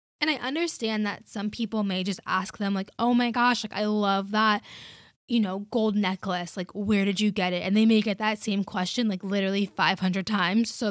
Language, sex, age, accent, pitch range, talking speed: English, female, 10-29, American, 200-250 Hz, 220 wpm